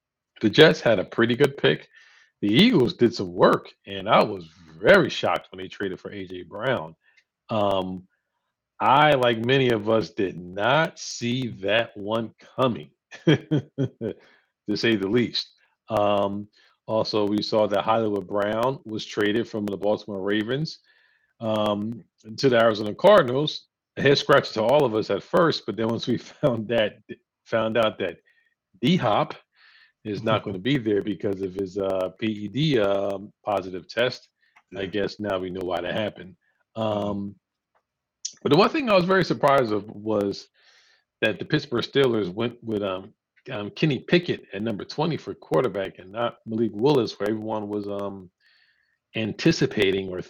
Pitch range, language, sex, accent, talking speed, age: 100-130 Hz, English, male, American, 160 wpm, 50-69